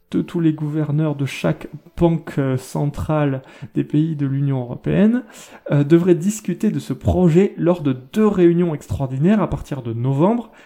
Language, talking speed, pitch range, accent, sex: French, 160 wpm, 140-180 Hz, French, male